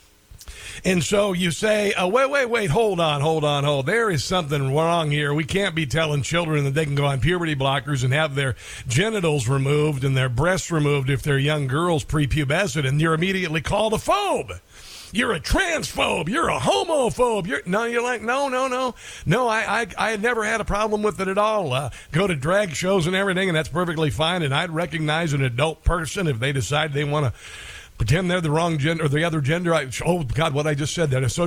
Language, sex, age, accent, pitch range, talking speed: English, male, 50-69, American, 140-195 Hz, 220 wpm